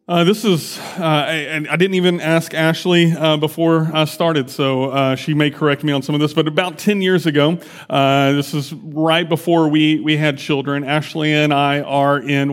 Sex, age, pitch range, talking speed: male, 30-49, 150-180 Hz, 210 wpm